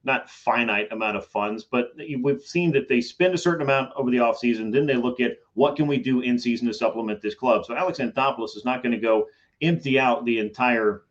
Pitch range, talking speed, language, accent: 115-135 Hz, 230 wpm, English, American